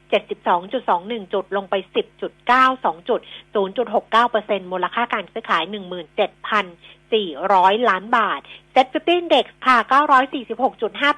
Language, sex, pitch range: Thai, female, 200-260 Hz